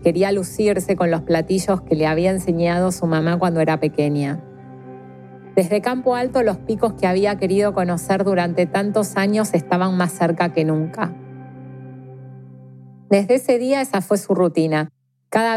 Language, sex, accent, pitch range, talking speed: Spanish, female, Argentinian, 160-190 Hz, 150 wpm